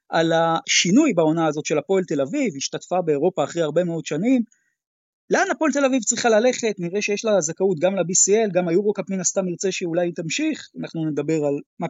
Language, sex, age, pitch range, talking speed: Hebrew, male, 30-49, 160-215 Hz, 190 wpm